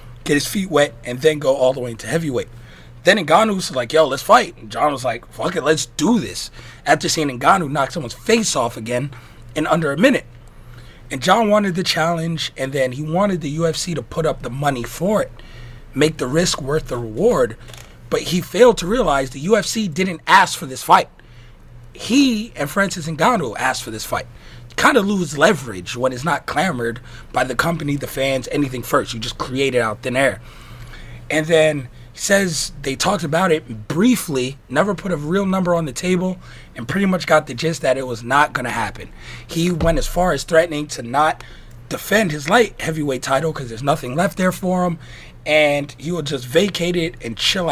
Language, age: English, 30-49